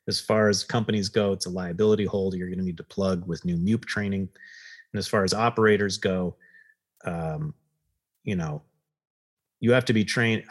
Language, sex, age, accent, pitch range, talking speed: English, male, 30-49, American, 100-125 Hz, 190 wpm